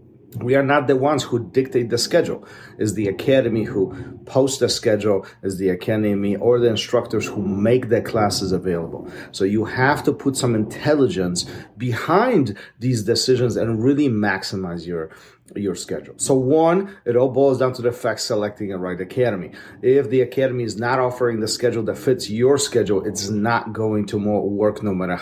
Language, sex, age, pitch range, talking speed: English, male, 40-59, 105-135 Hz, 180 wpm